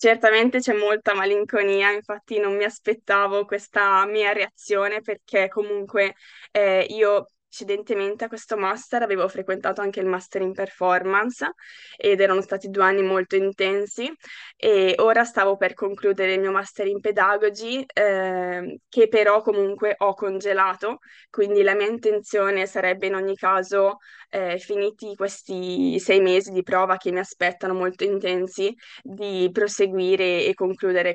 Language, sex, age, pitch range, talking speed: Italian, female, 20-39, 185-205 Hz, 140 wpm